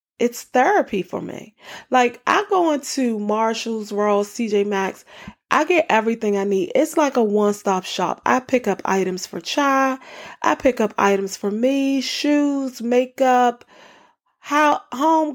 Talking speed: 145 wpm